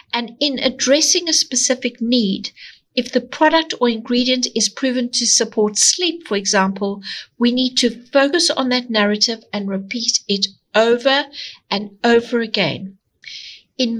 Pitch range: 210-260 Hz